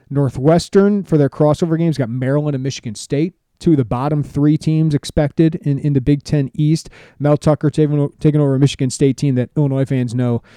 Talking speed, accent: 200 wpm, American